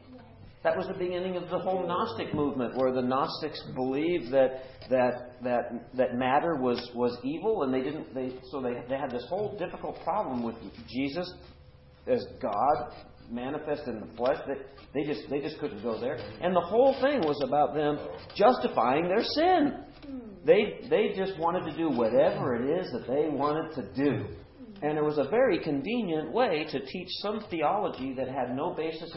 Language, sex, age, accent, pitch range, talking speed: English, male, 50-69, American, 120-165 Hz, 180 wpm